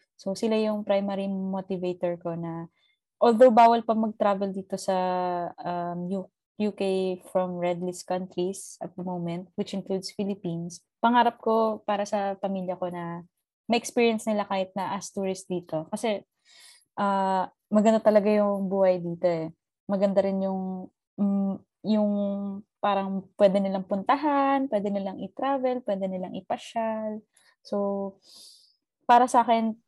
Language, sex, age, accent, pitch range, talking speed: Filipino, female, 20-39, native, 185-225 Hz, 125 wpm